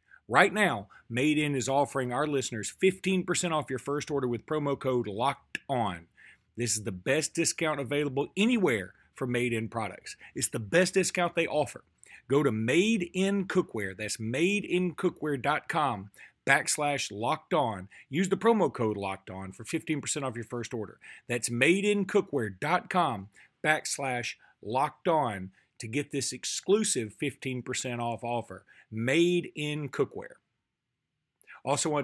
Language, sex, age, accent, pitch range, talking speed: English, male, 40-59, American, 120-155 Hz, 140 wpm